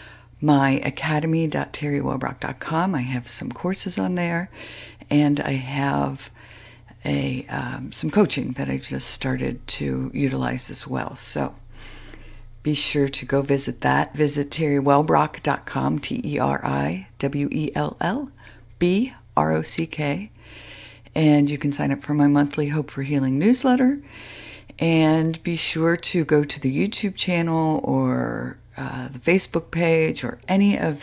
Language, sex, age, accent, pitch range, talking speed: English, female, 60-79, American, 130-170 Hz, 120 wpm